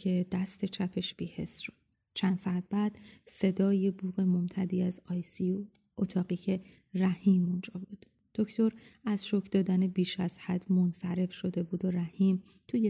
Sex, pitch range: female, 180-195 Hz